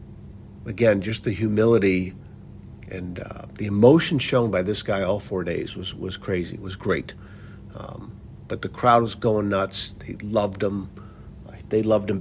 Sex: male